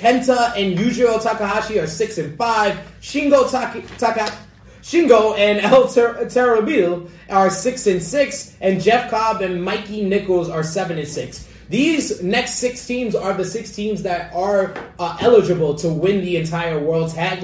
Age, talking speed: 20-39, 165 wpm